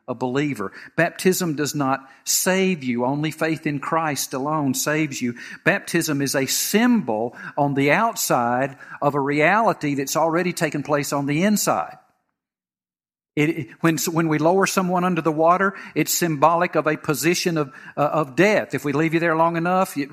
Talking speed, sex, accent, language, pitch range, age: 170 wpm, male, American, English, 145-185 Hz, 50-69